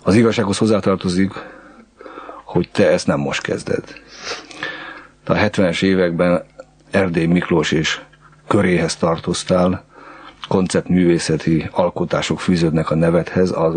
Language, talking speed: Hungarian, 105 wpm